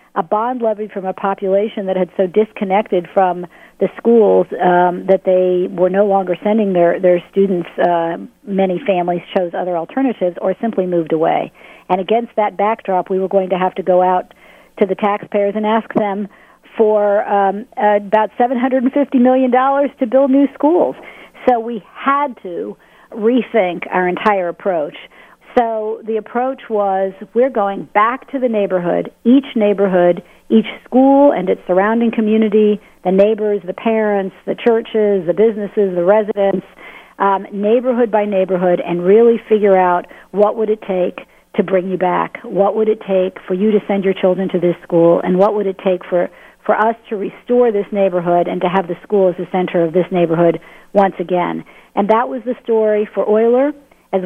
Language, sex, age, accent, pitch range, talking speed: English, female, 50-69, American, 180-220 Hz, 175 wpm